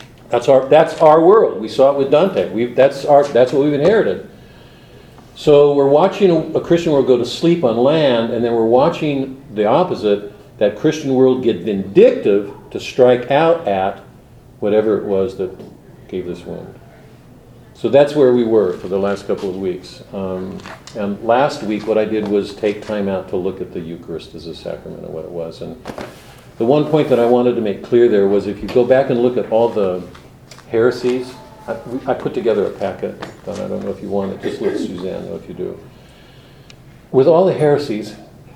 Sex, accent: male, American